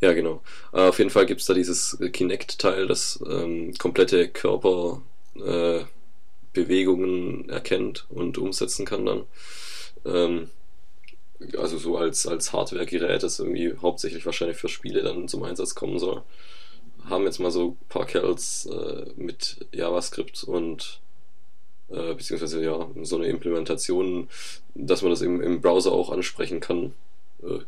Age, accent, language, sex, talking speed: 20-39, German, German, male, 140 wpm